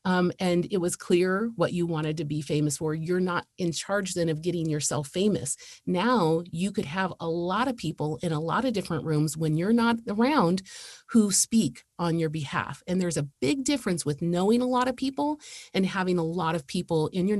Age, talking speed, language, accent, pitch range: 30-49, 215 wpm, English, American, 155-190 Hz